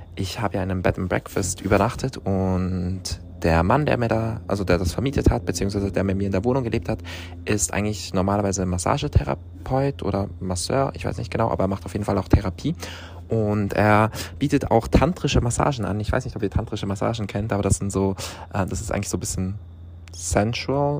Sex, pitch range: male, 90-105 Hz